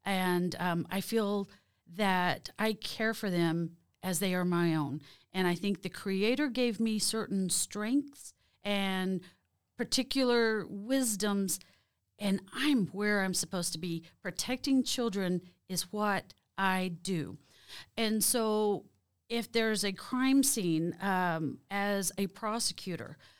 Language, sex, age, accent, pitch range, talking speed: English, female, 40-59, American, 170-215 Hz, 130 wpm